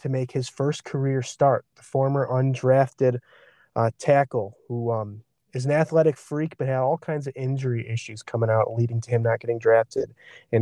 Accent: American